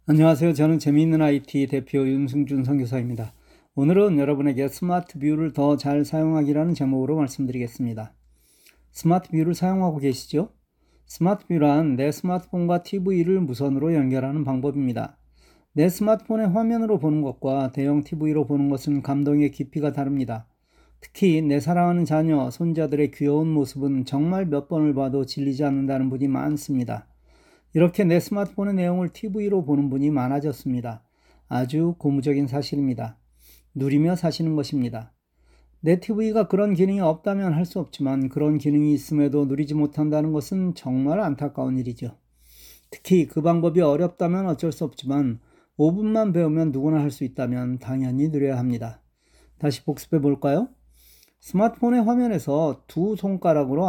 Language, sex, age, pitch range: Korean, male, 40-59, 135-170 Hz